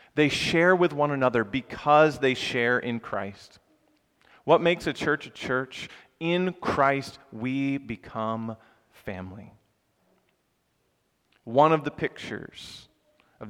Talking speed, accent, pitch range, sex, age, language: 115 wpm, American, 115-155 Hz, male, 40-59, English